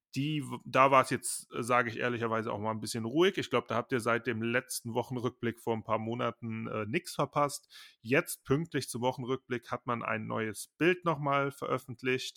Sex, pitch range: male, 110-130 Hz